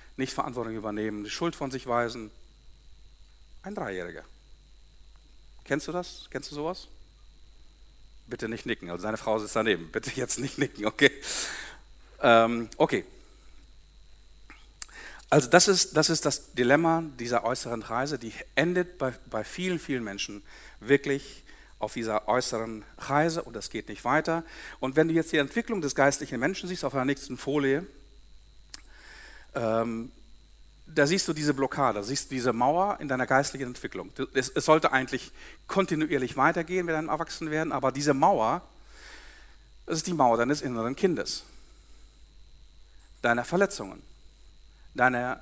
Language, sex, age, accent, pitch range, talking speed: German, male, 50-69, German, 110-155 Hz, 140 wpm